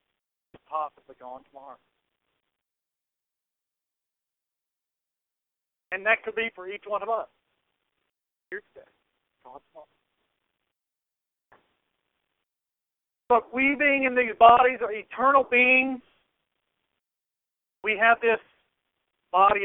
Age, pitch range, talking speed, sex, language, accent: 50-69, 155-205 Hz, 100 wpm, male, English, American